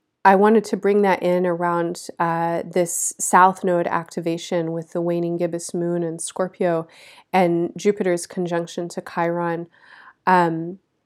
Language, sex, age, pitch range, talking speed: English, female, 30-49, 170-195 Hz, 135 wpm